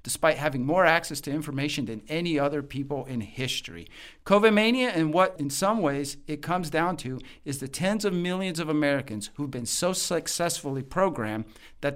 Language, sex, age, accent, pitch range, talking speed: English, male, 50-69, American, 125-165 Hz, 180 wpm